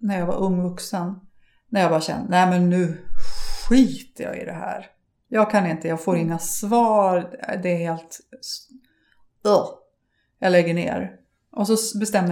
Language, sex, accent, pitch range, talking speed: Swedish, female, native, 175-215 Hz, 160 wpm